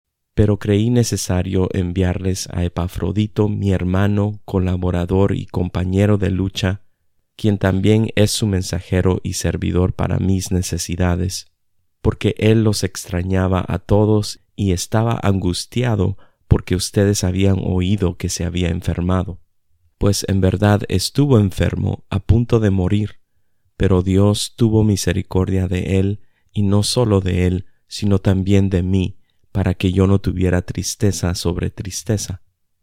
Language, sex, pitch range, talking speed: Spanish, male, 90-105 Hz, 130 wpm